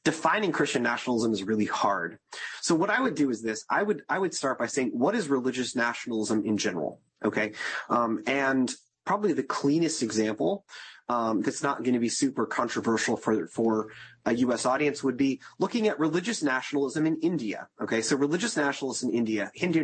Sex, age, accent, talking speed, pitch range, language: male, 30-49, American, 185 wpm, 120-160 Hz, English